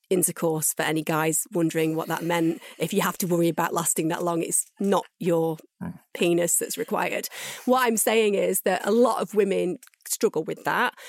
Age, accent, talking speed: 30-49, British, 190 wpm